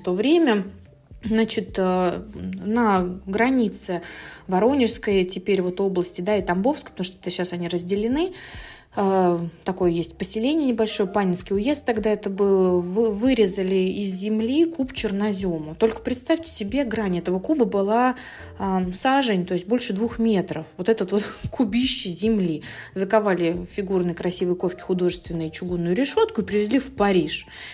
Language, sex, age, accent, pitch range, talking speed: Russian, female, 20-39, native, 185-235 Hz, 135 wpm